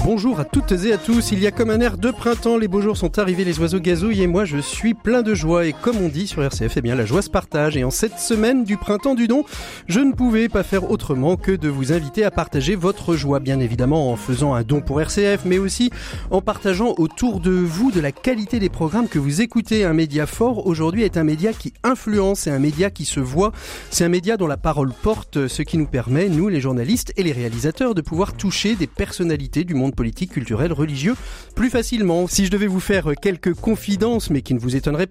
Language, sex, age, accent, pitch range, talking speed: French, male, 40-59, French, 150-205 Hz, 245 wpm